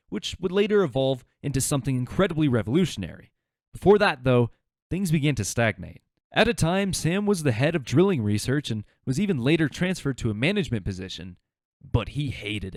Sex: male